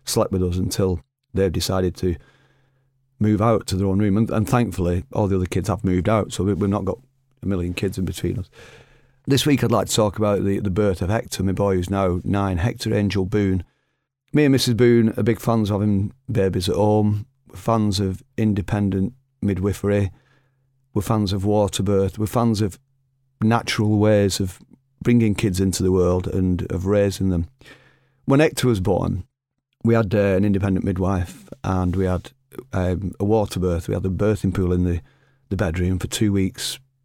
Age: 40-59